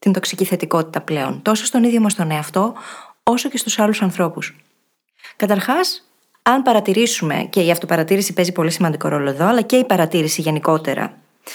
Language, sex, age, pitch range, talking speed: Greek, female, 20-39, 175-230 Hz, 160 wpm